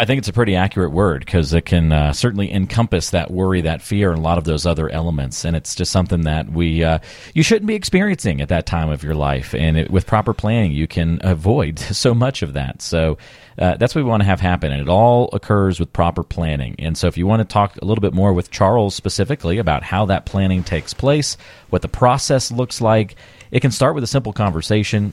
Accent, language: American, English